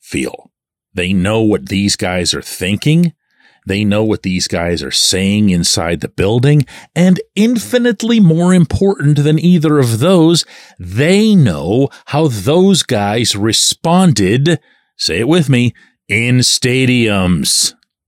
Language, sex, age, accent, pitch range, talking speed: English, male, 40-59, American, 100-150 Hz, 125 wpm